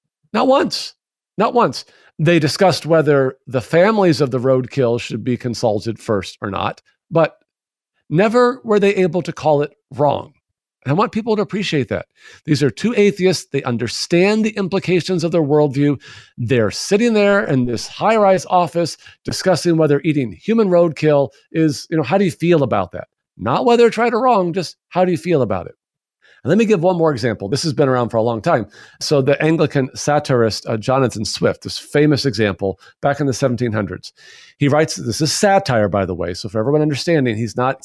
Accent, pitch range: American, 125-175 Hz